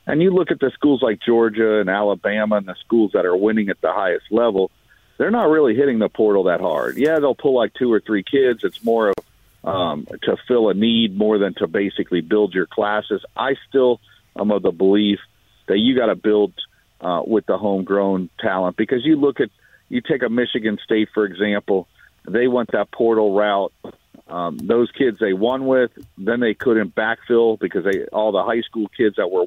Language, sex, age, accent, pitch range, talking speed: English, male, 50-69, American, 100-120 Hz, 205 wpm